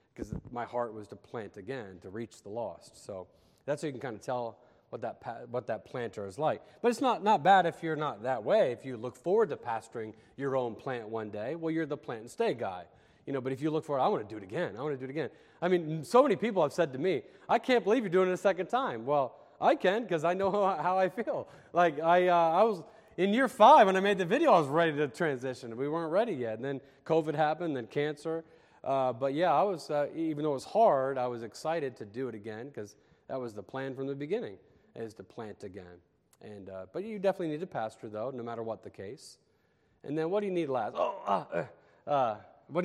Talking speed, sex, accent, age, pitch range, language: 255 wpm, male, American, 30-49, 125-175 Hz, English